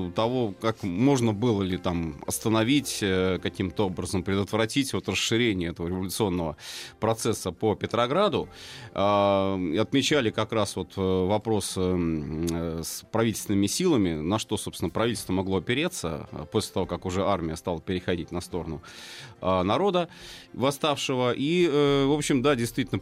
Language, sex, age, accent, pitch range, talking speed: Russian, male, 30-49, native, 95-125 Hz, 115 wpm